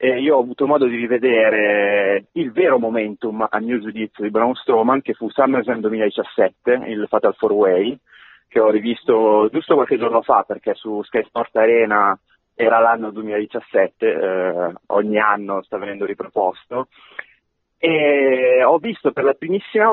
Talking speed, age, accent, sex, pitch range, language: 155 wpm, 30-49, native, male, 105-130 Hz, Italian